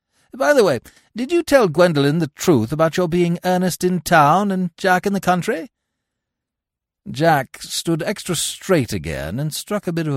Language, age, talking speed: English, 60-79, 175 wpm